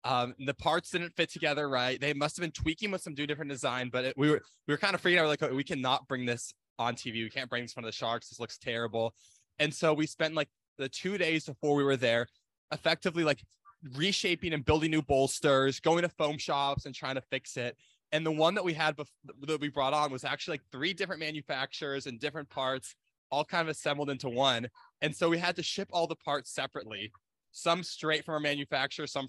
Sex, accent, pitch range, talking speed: male, American, 130-155 Hz, 240 wpm